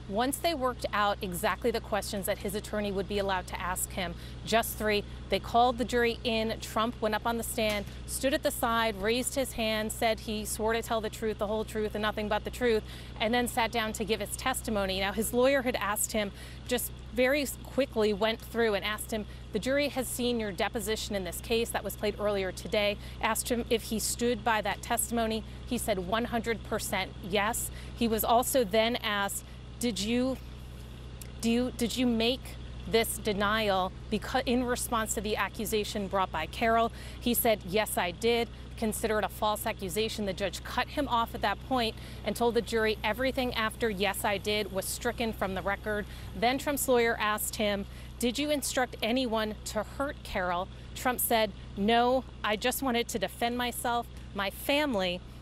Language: English